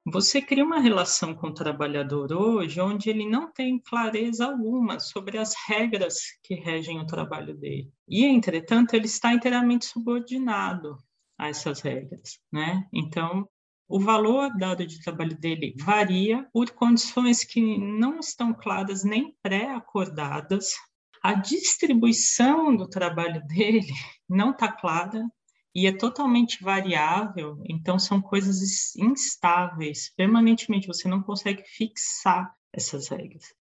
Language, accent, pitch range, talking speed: Portuguese, Brazilian, 165-230 Hz, 125 wpm